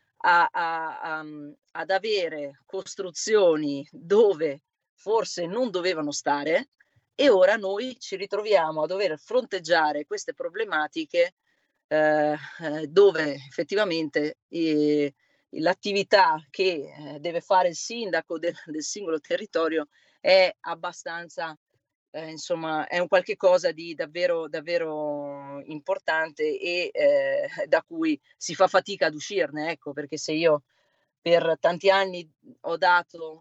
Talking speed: 110 wpm